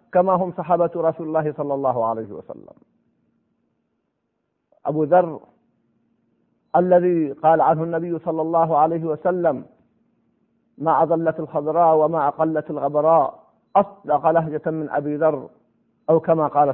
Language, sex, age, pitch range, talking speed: Arabic, male, 50-69, 155-195 Hz, 120 wpm